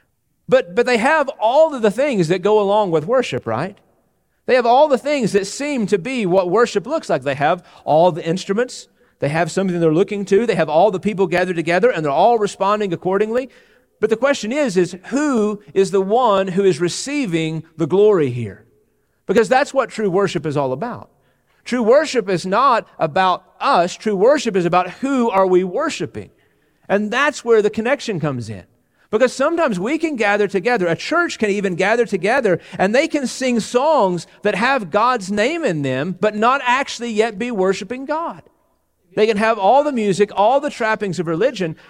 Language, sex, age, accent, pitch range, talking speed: English, male, 40-59, American, 175-240 Hz, 195 wpm